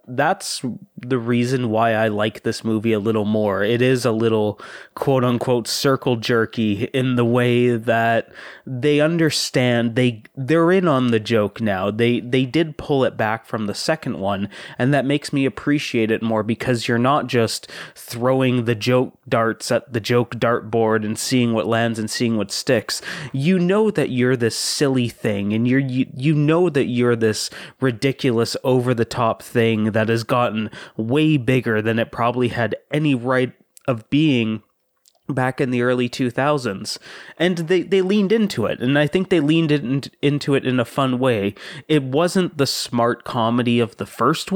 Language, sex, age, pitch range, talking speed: English, male, 20-39, 115-140 Hz, 180 wpm